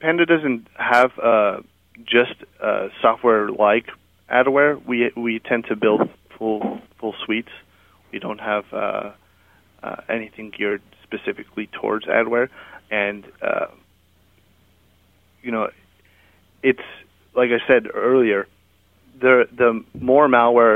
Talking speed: 115 wpm